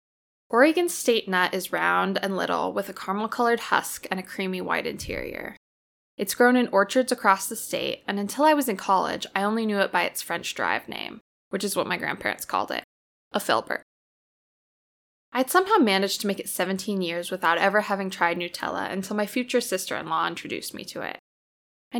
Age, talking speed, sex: 10-29, 190 wpm, female